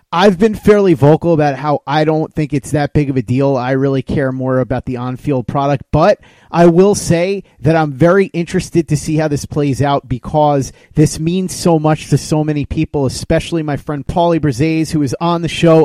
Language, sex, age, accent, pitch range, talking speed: English, male, 30-49, American, 140-170 Hz, 210 wpm